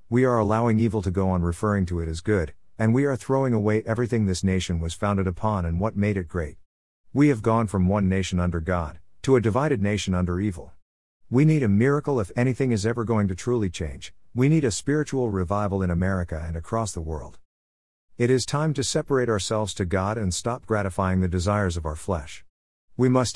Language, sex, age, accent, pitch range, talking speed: English, male, 50-69, American, 90-115 Hz, 215 wpm